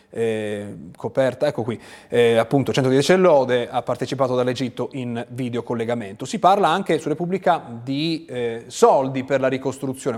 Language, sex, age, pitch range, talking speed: Italian, male, 30-49, 130-170 Hz, 140 wpm